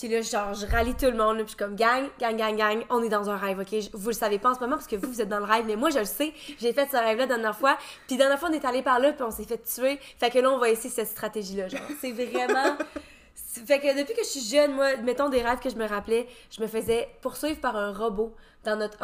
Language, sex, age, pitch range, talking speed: French, female, 20-39, 215-260 Hz, 320 wpm